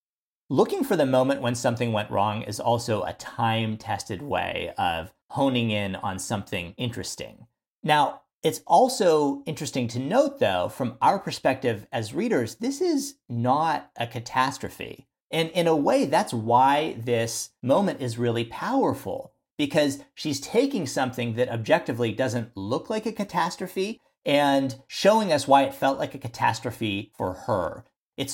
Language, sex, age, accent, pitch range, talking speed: English, male, 40-59, American, 110-140 Hz, 150 wpm